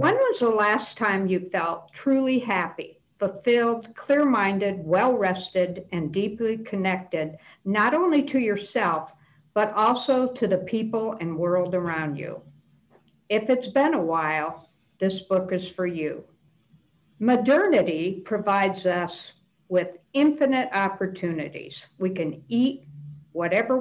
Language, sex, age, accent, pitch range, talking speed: English, female, 60-79, American, 175-235 Hz, 120 wpm